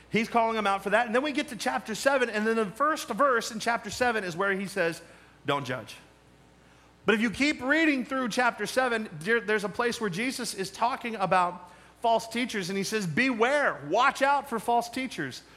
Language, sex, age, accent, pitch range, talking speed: English, male, 40-59, American, 180-235 Hz, 210 wpm